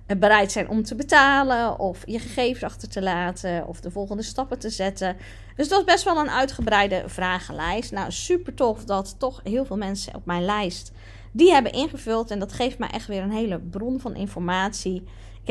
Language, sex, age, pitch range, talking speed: Dutch, female, 20-39, 180-240 Hz, 195 wpm